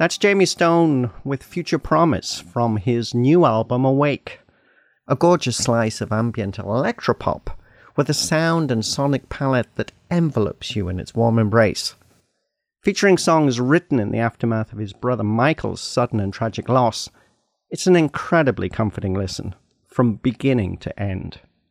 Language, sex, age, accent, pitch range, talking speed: English, male, 40-59, British, 110-145 Hz, 145 wpm